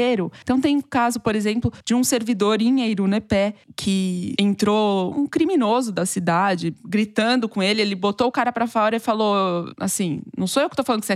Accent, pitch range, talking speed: Brazilian, 190-235 Hz, 200 wpm